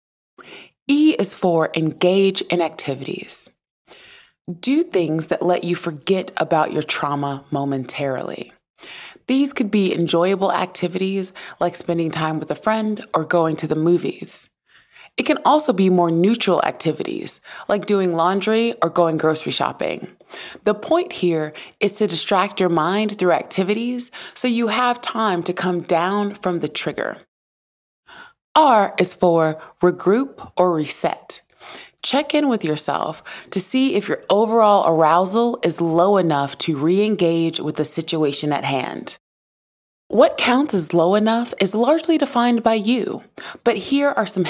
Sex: female